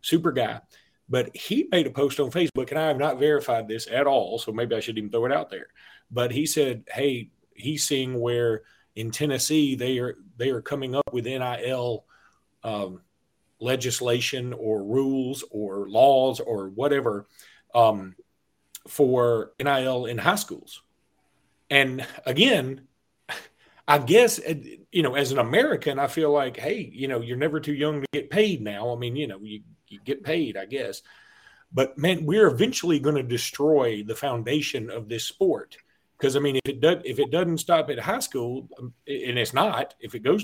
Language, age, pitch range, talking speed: English, 40-59, 125-165 Hz, 180 wpm